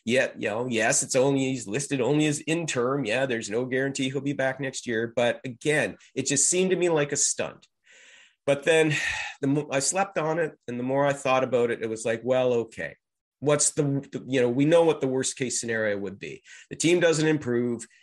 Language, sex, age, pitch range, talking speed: English, male, 40-59, 115-140 Hz, 225 wpm